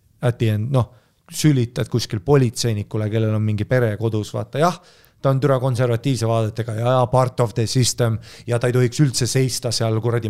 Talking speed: 170 wpm